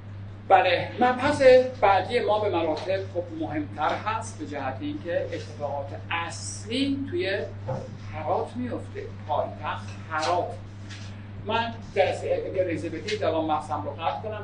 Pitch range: 100-155 Hz